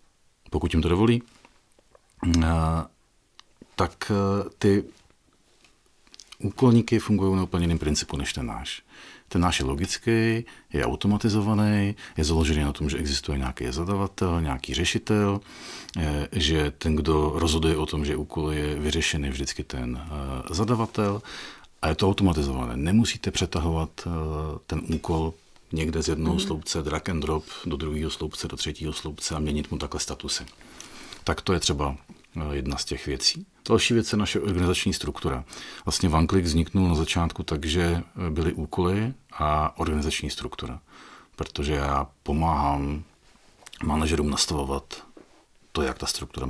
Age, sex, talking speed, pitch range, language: 40-59, male, 135 wpm, 75-95 Hz, Czech